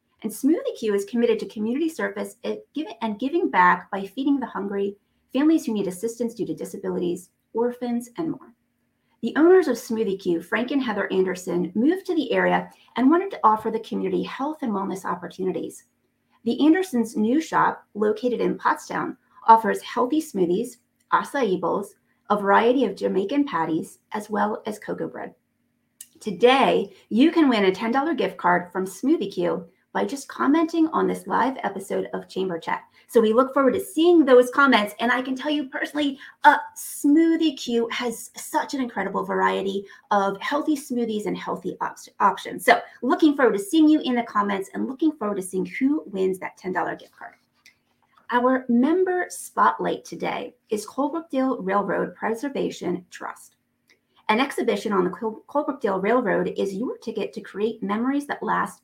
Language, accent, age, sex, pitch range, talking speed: English, American, 30-49, female, 200-285 Hz, 165 wpm